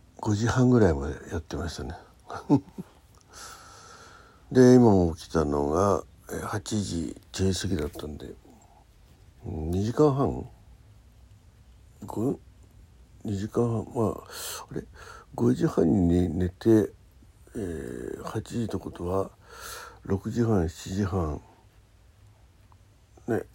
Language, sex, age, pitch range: Japanese, male, 60-79, 85-115 Hz